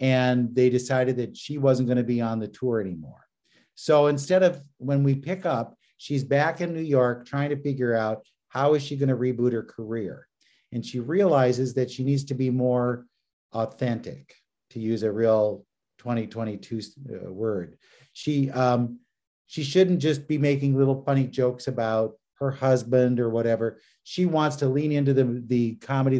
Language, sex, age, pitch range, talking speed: English, male, 50-69, 120-145 Hz, 165 wpm